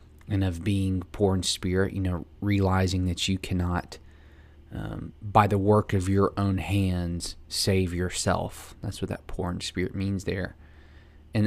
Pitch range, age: 80-100 Hz, 20-39